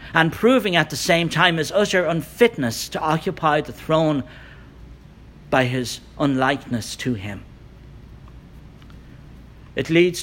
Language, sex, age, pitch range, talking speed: English, male, 60-79, 125-165 Hz, 115 wpm